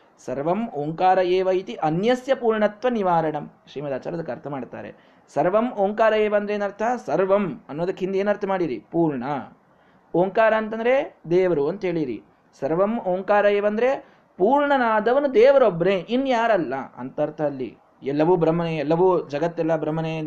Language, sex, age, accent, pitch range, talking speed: Kannada, male, 20-39, native, 170-245 Hz, 115 wpm